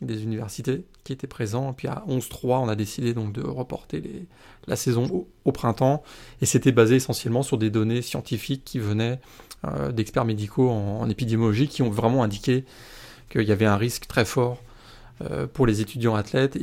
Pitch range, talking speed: 115-135 Hz, 190 wpm